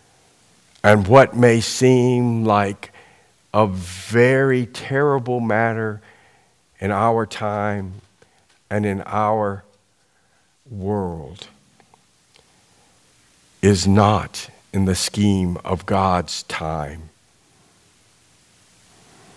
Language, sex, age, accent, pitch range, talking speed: English, male, 50-69, American, 95-115 Hz, 75 wpm